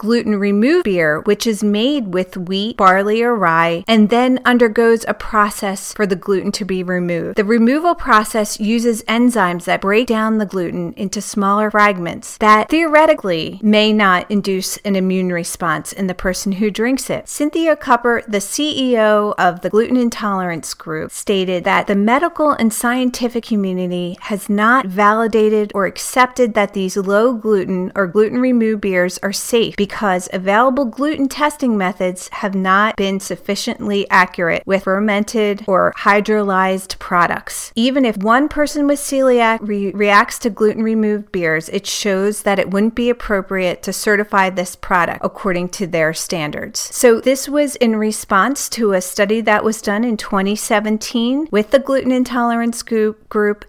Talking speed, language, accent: 150 wpm, English, American